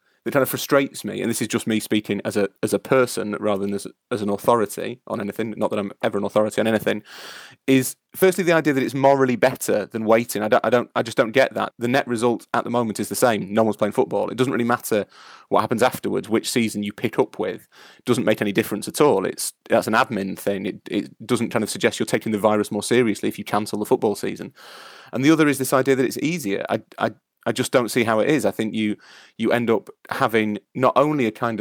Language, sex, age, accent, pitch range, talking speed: English, male, 30-49, British, 105-125 Hz, 260 wpm